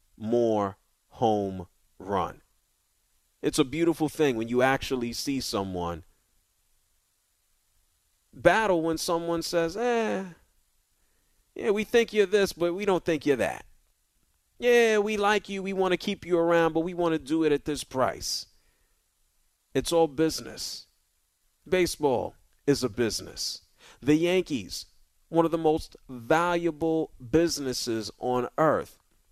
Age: 40-59